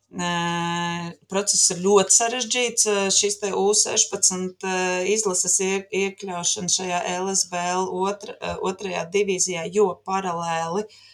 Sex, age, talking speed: female, 20-39, 85 wpm